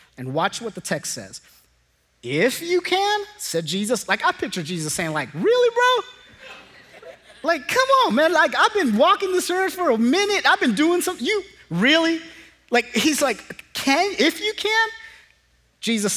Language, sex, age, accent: English, male, 30-49, American